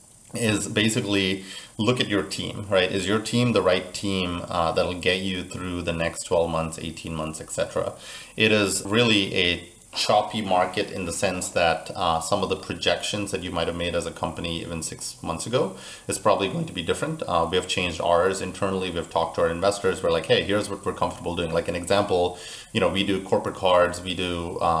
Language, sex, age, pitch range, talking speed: English, male, 30-49, 90-110 Hz, 215 wpm